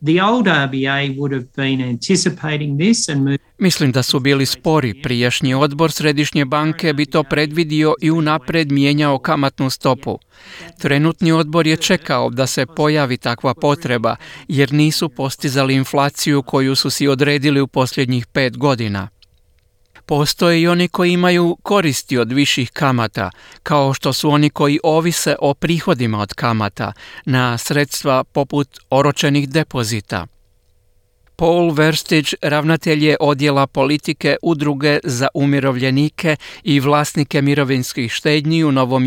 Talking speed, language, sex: 120 wpm, Croatian, male